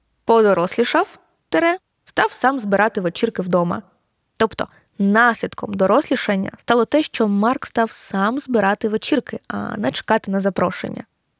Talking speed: 120 wpm